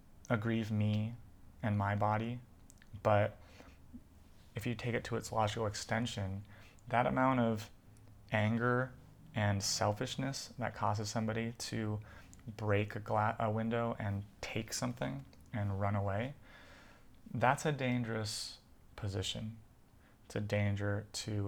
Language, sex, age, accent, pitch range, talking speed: English, male, 30-49, American, 100-115 Hz, 115 wpm